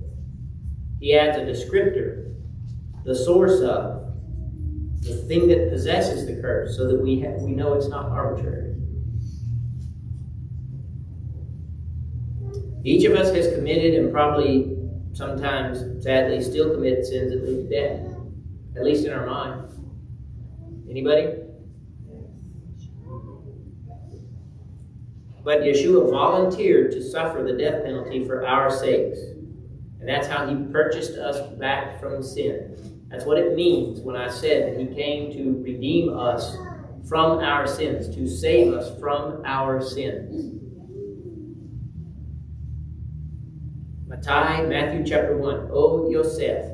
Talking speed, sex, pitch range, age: 120 wpm, male, 115-155 Hz, 40-59